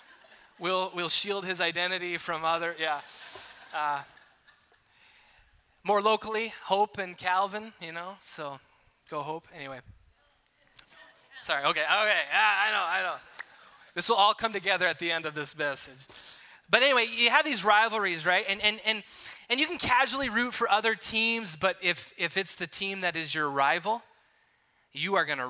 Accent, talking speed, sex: American, 165 wpm, male